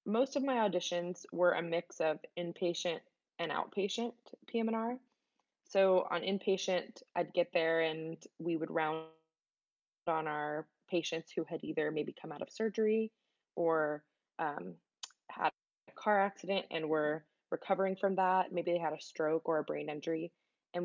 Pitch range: 160-190 Hz